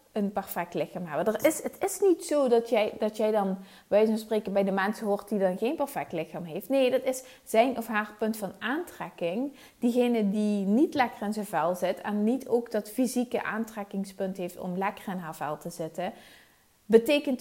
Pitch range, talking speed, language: 190-230 Hz, 205 wpm, Dutch